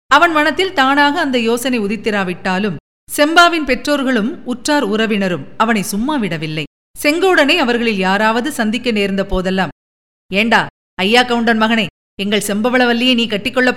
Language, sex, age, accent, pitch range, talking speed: Tamil, female, 50-69, native, 205-270 Hz, 115 wpm